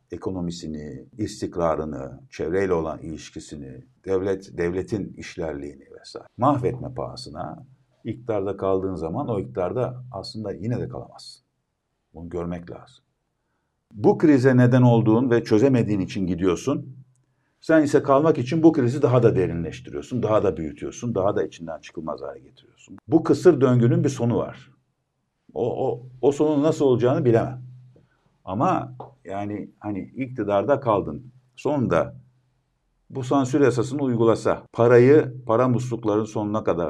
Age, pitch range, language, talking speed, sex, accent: 50-69, 95-130 Hz, Turkish, 125 wpm, male, native